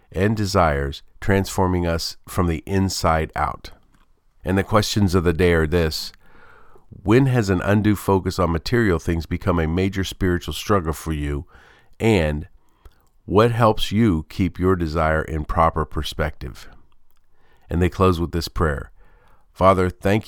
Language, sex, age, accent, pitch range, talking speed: English, male, 50-69, American, 85-105 Hz, 145 wpm